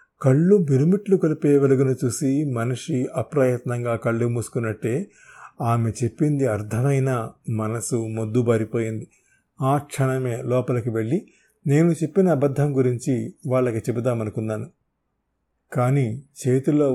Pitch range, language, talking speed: 120-150 Hz, Telugu, 90 wpm